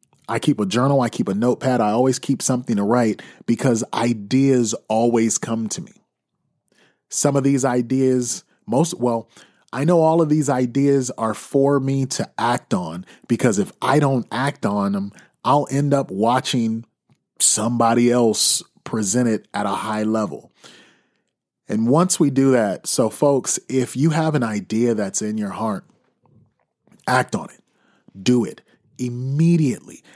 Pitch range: 120-150 Hz